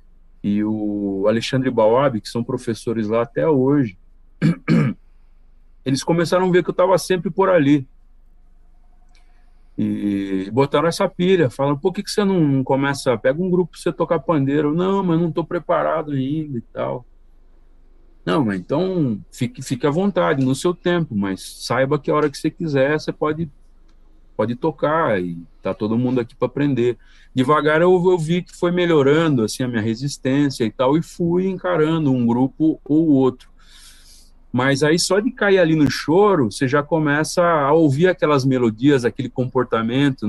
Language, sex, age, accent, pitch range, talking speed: Portuguese, male, 40-59, Brazilian, 115-160 Hz, 170 wpm